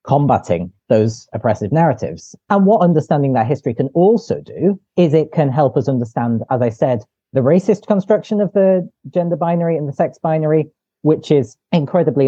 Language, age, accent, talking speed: English, 30-49, British, 170 wpm